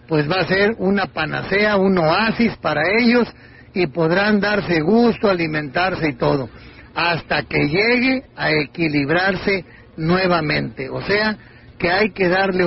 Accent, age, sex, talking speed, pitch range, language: Mexican, 40-59, male, 135 wpm, 155-200 Hz, Spanish